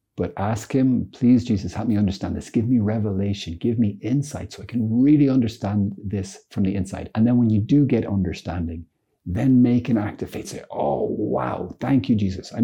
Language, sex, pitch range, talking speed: English, male, 90-110 Hz, 210 wpm